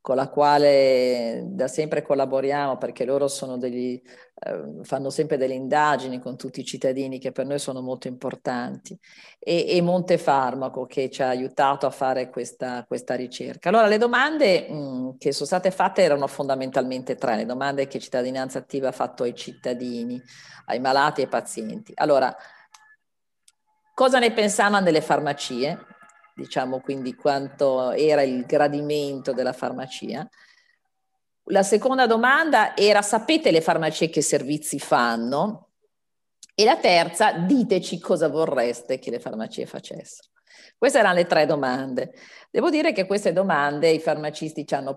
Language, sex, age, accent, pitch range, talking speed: Italian, female, 40-59, native, 130-160 Hz, 145 wpm